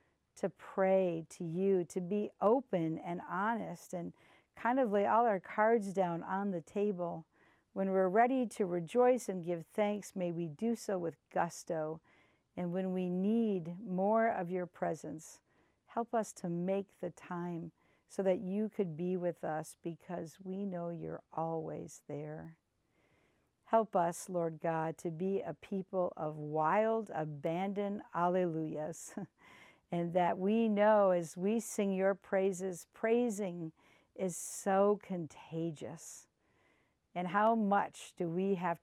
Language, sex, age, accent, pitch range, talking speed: English, female, 50-69, American, 165-200 Hz, 140 wpm